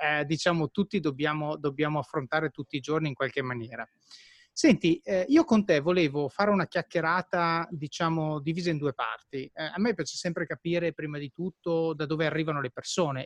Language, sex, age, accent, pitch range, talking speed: Italian, male, 30-49, native, 145-170 Hz, 180 wpm